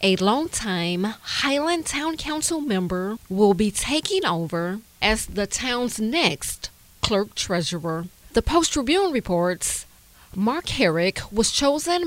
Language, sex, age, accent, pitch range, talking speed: English, female, 30-49, American, 185-300 Hz, 115 wpm